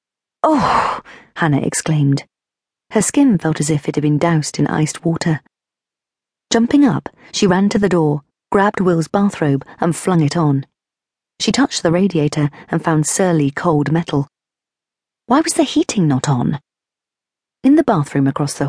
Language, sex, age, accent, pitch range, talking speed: English, female, 40-59, British, 150-205 Hz, 155 wpm